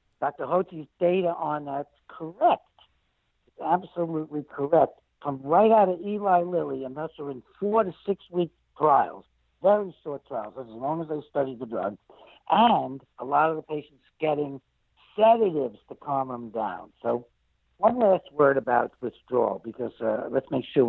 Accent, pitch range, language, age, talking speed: American, 115-160 Hz, English, 60-79, 160 wpm